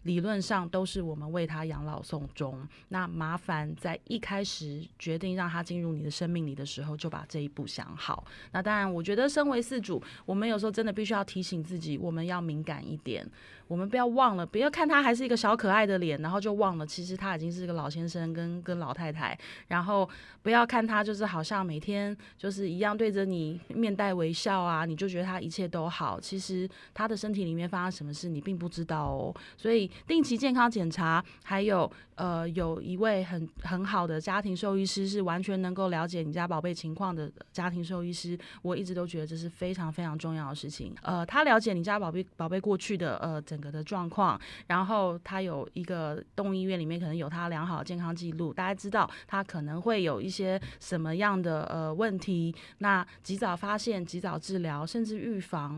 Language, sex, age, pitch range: Chinese, female, 20-39, 160-200 Hz